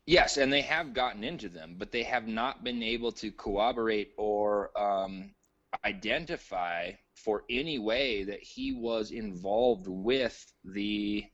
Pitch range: 100-120 Hz